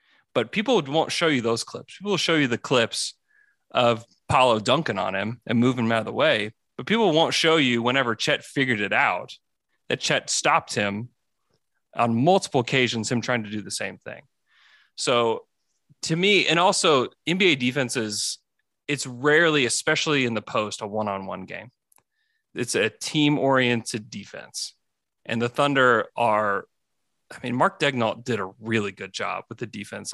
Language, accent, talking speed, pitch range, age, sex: English, American, 170 wpm, 110-135 Hz, 30-49, male